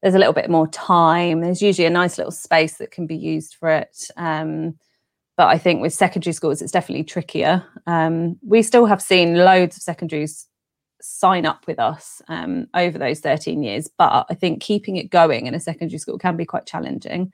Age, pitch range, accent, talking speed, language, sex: 30-49, 160-195 Hz, British, 205 wpm, English, female